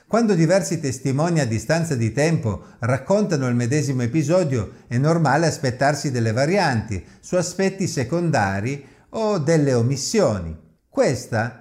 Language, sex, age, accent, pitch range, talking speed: Italian, male, 50-69, native, 115-180 Hz, 120 wpm